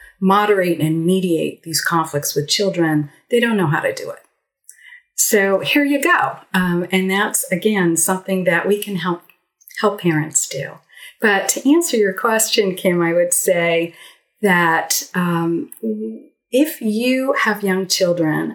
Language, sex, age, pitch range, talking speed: English, female, 40-59, 160-210 Hz, 150 wpm